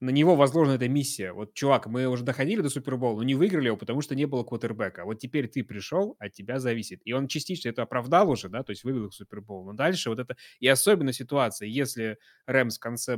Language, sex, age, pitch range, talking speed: Russian, male, 20-39, 110-140 Hz, 230 wpm